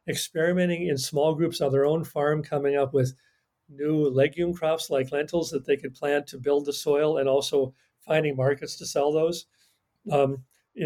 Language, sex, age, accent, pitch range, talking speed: English, male, 50-69, American, 140-165 Hz, 180 wpm